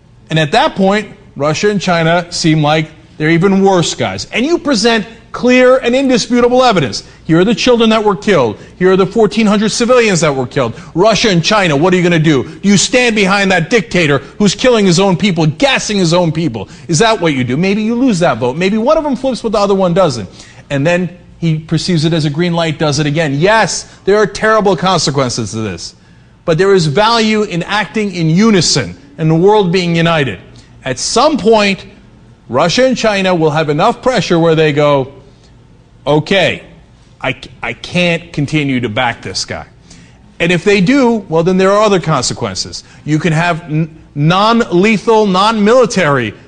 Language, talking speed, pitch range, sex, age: English, 195 wpm, 155-215 Hz, male, 40-59